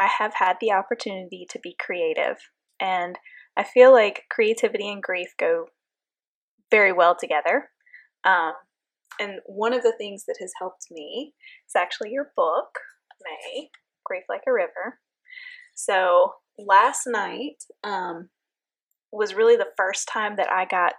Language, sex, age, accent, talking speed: English, female, 10-29, American, 145 wpm